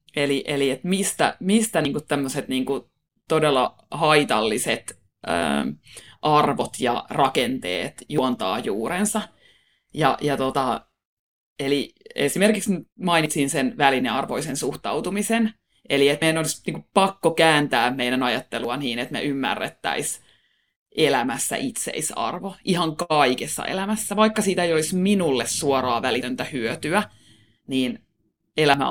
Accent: native